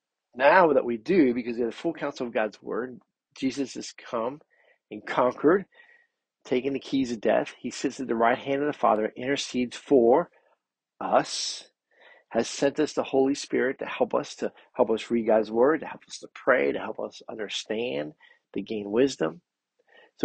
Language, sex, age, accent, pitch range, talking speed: English, male, 50-69, American, 110-145 Hz, 185 wpm